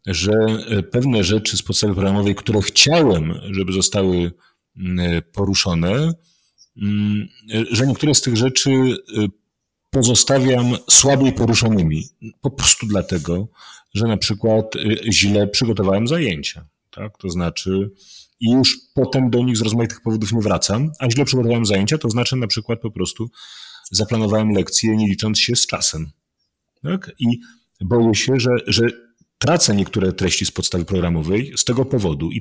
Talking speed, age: 135 wpm, 40-59